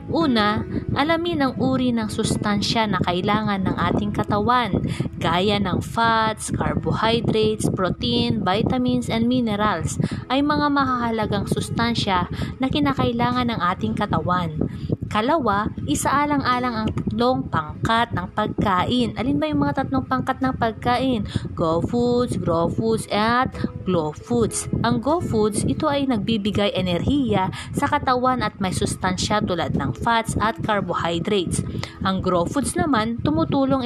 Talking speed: 125 wpm